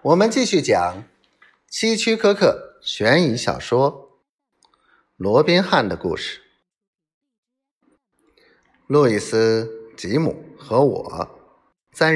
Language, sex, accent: Chinese, male, native